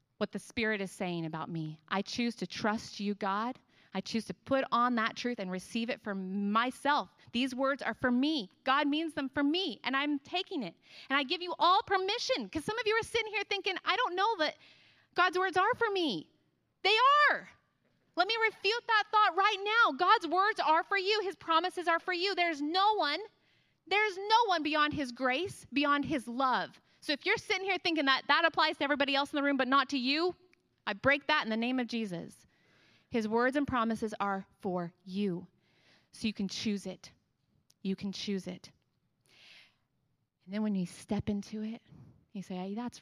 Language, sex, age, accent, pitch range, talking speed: English, female, 30-49, American, 195-325 Hz, 205 wpm